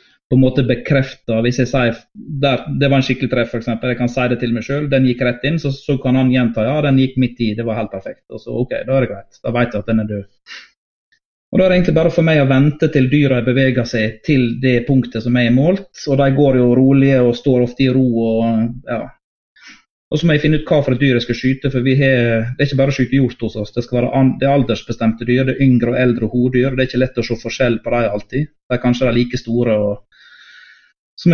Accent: Swedish